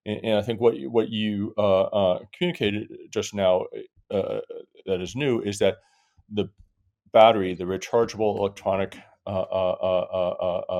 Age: 40-59